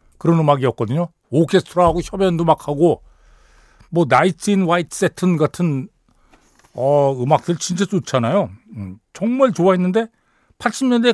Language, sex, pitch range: Korean, male, 145-215 Hz